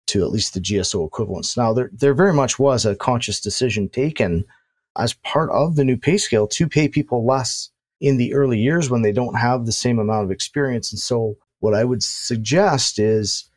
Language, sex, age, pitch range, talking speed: English, male, 40-59, 115-140 Hz, 210 wpm